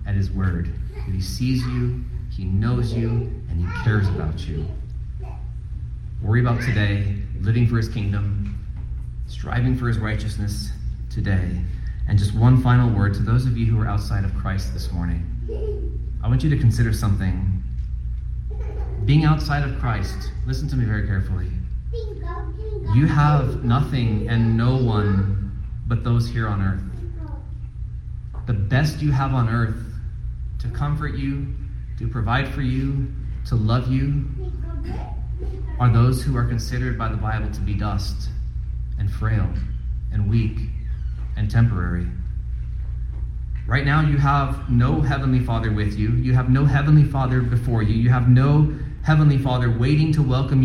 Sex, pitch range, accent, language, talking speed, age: male, 95-125 Hz, American, English, 150 wpm, 30-49